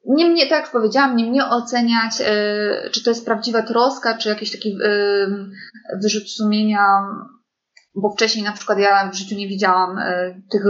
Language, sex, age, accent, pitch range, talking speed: Polish, female, 20-39, native, 200-245 Hz, 185 wpm